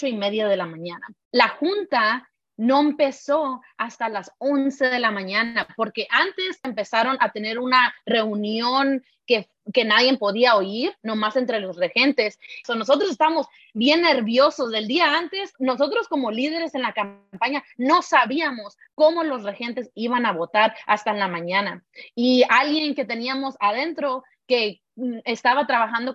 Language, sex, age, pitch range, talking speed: English, female, 30-49, 230-310 Hz, 150 wpm